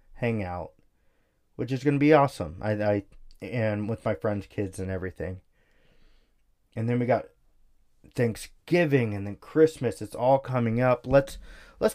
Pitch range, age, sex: 105-140 Hz, 20-39, male